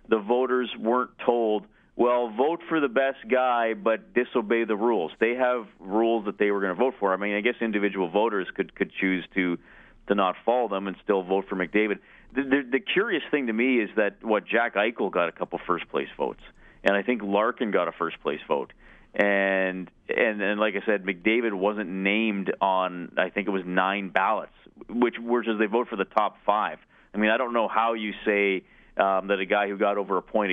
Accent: American